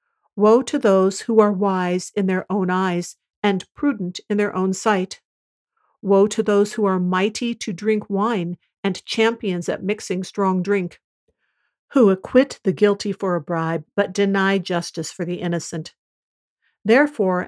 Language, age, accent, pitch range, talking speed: English, 50-69, American, 185-215 Hz, 155 wpm